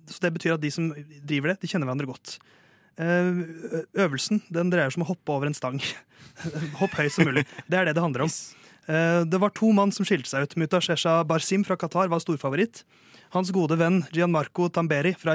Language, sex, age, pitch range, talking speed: English, male, 30-49, 150-180 Hz, 215 wpm